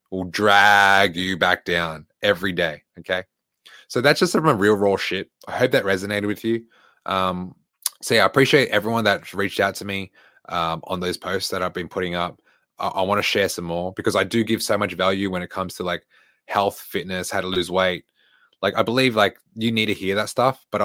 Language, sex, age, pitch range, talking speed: English, male, 20-39, 95-115 Hz, 225 wpm